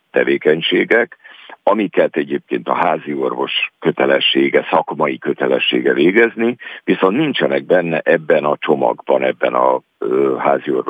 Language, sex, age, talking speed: Hungarian, male, 60-79, 105 wpm